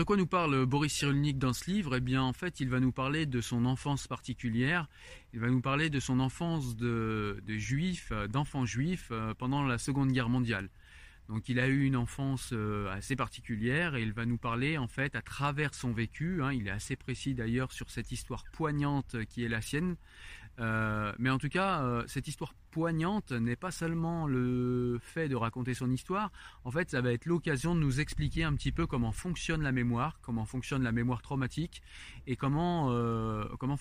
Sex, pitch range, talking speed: male, 115-140 Hz, 200 wpm